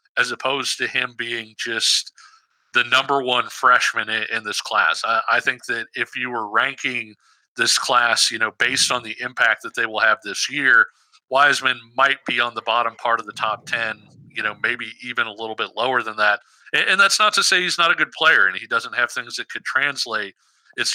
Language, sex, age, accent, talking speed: English, male, 50-69, American, 210 wpm